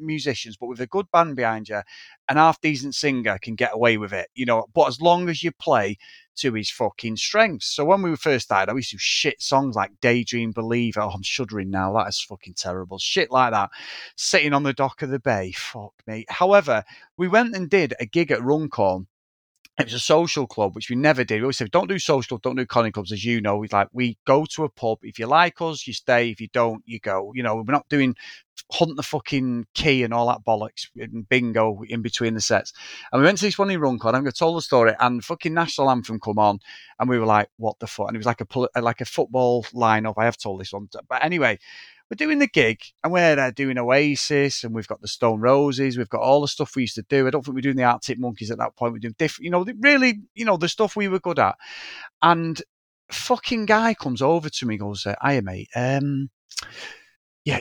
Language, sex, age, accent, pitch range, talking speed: English, male, 30-49, British, 115-165 Hz, 245 wpm